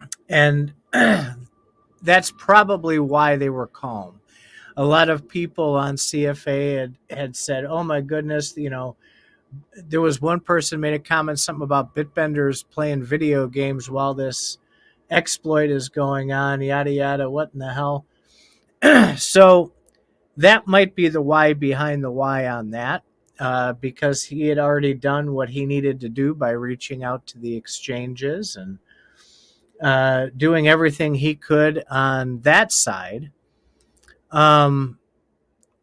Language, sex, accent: English, male, American